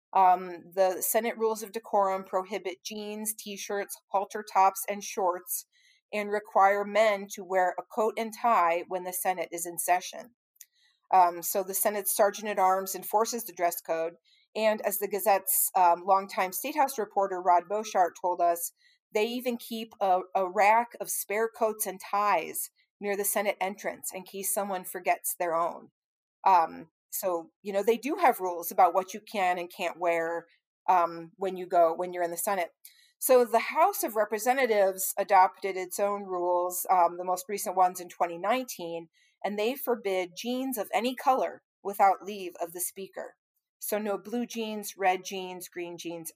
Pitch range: 180-220 Hz